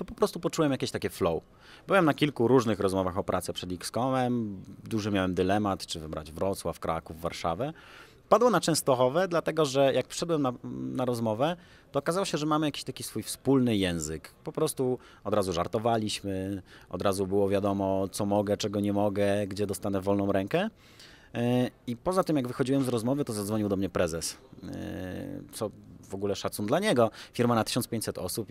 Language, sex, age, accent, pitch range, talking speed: Polish, male, 30-49, native, 95-130 Hz, 175 wpm